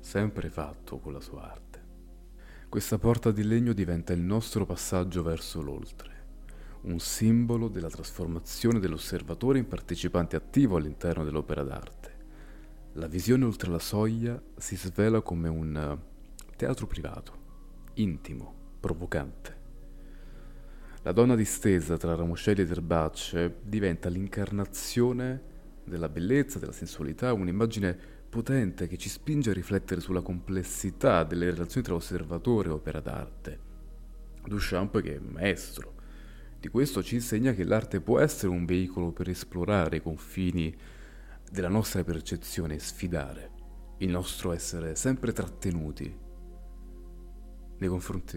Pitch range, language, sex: 85-105 Hz, Italian, male